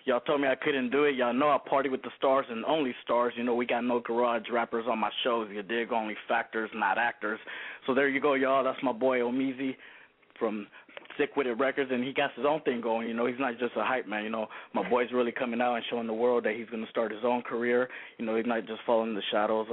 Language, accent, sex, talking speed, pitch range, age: English, American, male, 270 wpm, 110-130 Hz, 20-39